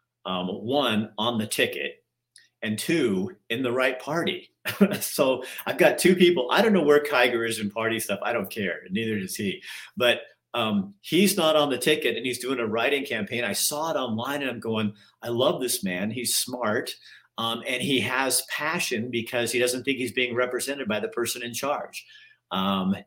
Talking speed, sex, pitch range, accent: 195 wpm, male, 110-160 Hz, American